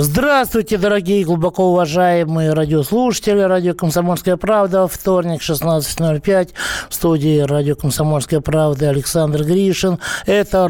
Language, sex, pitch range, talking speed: Russian, male, 150-180 Hz, 105 wpm